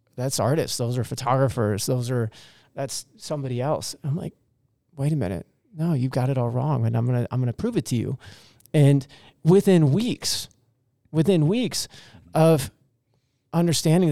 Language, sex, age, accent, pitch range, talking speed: English, male, 30-49, American, 125-150 Hz, 165 wpm